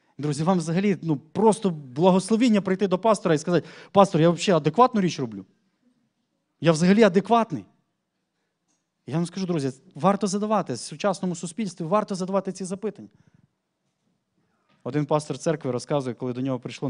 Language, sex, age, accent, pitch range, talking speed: Ukrainian, male, 20-39, native, 145-190 Hz, 145 wpm